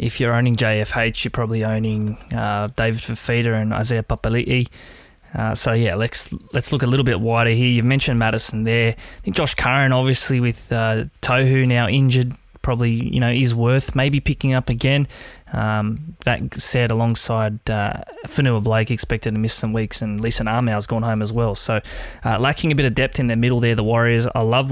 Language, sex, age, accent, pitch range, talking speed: English, male, 20-39, Australian, 115-130 Hz, 200 wpm